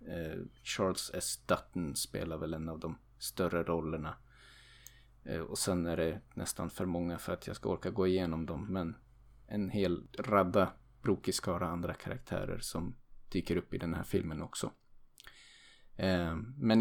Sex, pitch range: male, 85-100 Hz